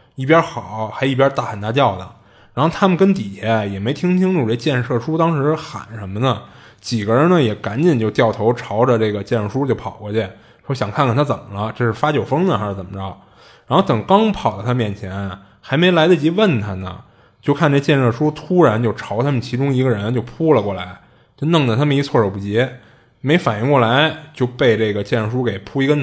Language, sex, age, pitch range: Chinese, male, 20-39, 105-140 Hz